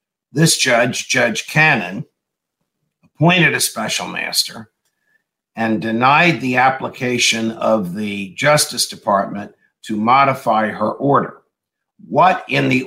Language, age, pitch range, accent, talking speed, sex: English, 50-69, 115-145 Hz, American, 105 wpm, male